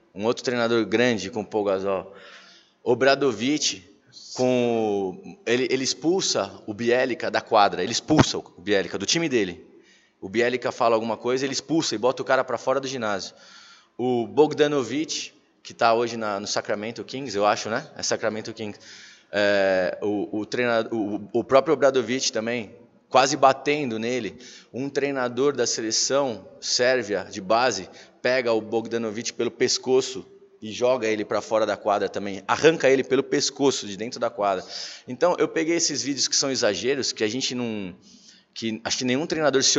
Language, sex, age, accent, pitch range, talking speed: Portuguese, male, 20-39, Brazilian, 110-135 Hz, 160 wpm